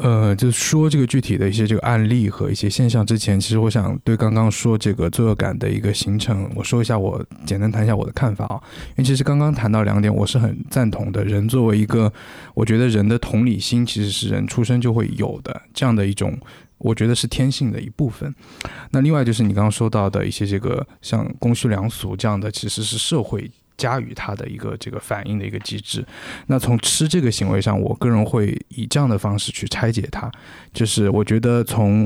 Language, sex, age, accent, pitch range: Chinese, male, 20-39, native, 105-120 Hz